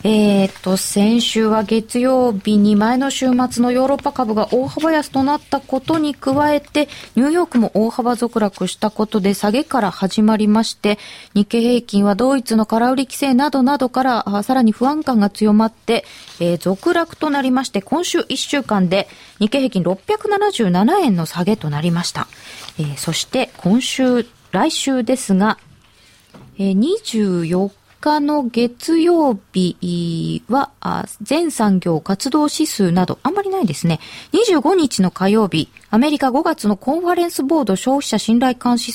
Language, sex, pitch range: Japanese, female, 200-275 Hz